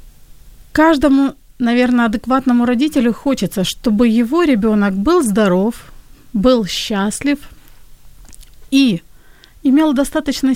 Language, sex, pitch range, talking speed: Ukrainian, female, 215-275 Hz, 85 wpm